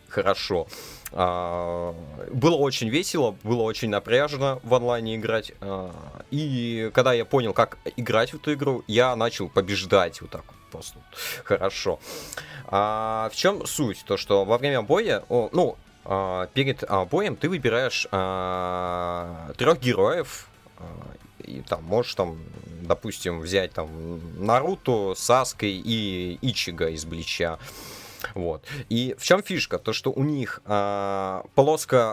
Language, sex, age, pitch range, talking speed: Russian, male, 20-39, 95-135 Hz, 120 wpm